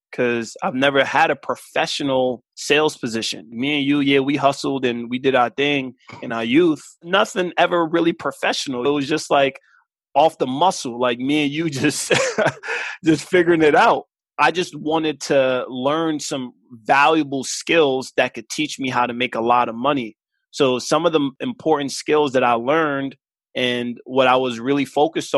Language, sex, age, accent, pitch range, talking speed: English, male, 20-39, American, 125-150 Hz, 180 wpm